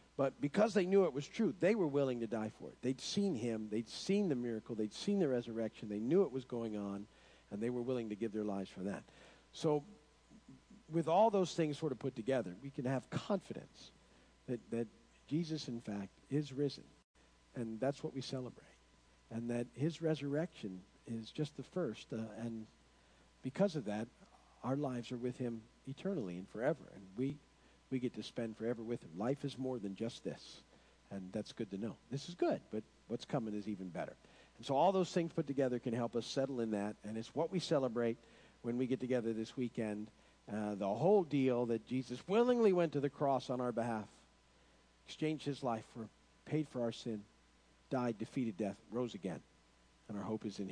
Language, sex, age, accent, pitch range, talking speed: English, male, 50-69, American, 110-155 Hz, 205 wpm